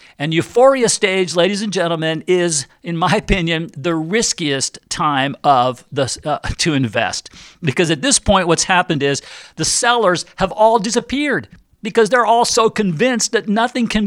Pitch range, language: 170-225 Hz, English